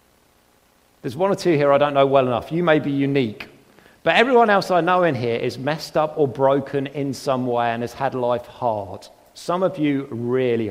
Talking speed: 215 wpm